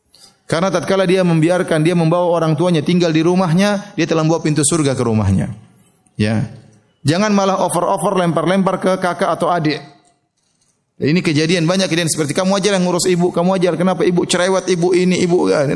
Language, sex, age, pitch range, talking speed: Indonesian, male, 30-49, 130-185 Hz, 175 wpm